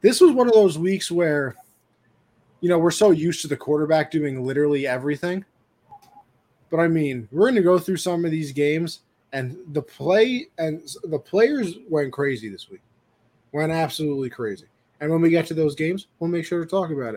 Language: English